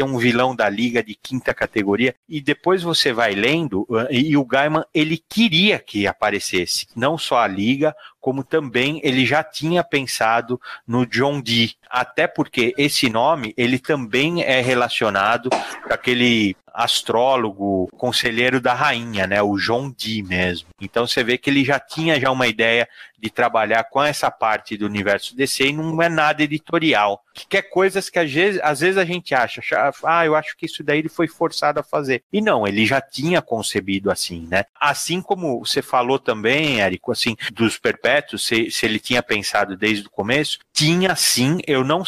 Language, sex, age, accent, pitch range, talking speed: Portuguese, male, 30-49, Brazilian, 110-155 Hz, 180 wpm